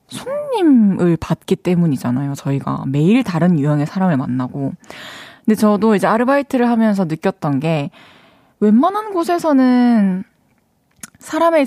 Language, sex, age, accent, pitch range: Korean, female, 20-39, native, 165-245 Hz